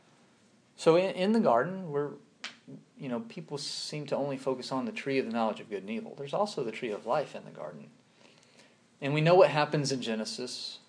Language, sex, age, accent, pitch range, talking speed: English, male, 40-59, American, 130-175 Hz, 210 wpm